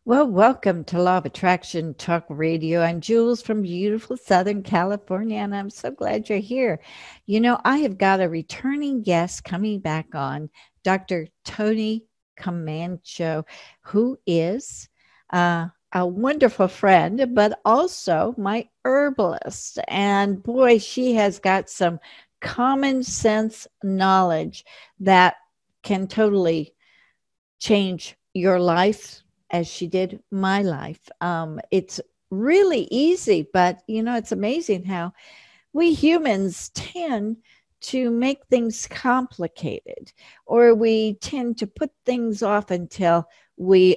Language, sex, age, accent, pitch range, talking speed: English, female, 60-79, American, 175-235 Hz, 125 wpm